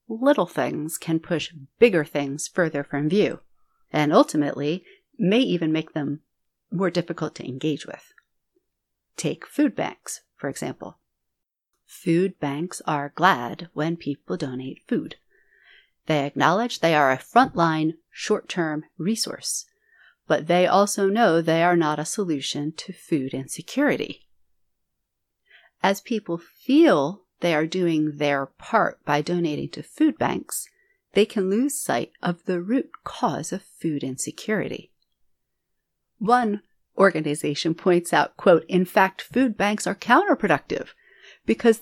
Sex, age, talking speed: female, 40-59, 130 wpm